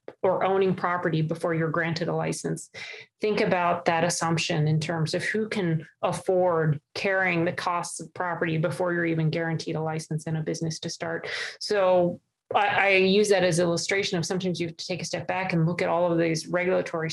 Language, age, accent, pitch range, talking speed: English, 30-49, American, 160-180 Hz, 200 wpm